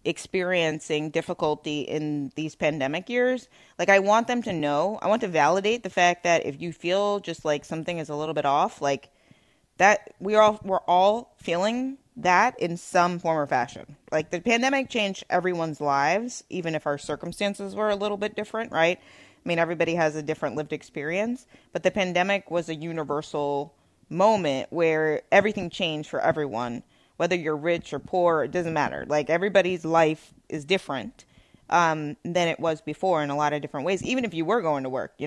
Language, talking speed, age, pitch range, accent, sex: English, 190 wpm, 20-39, 150-180 Hz, American, female